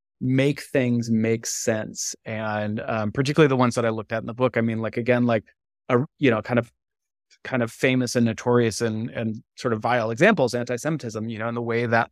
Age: 30-49